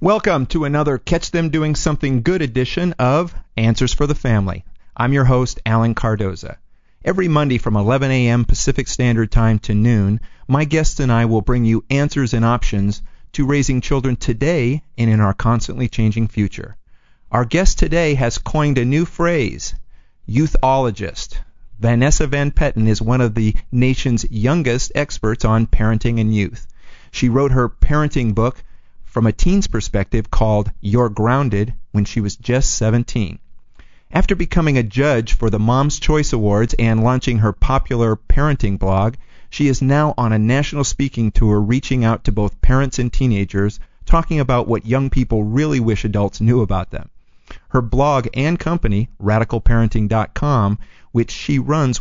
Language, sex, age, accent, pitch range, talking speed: English, male, 40-59, American, 110-140 Hz, 160 wpm